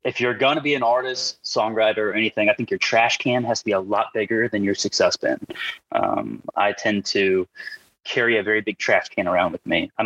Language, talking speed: English, 235 wpm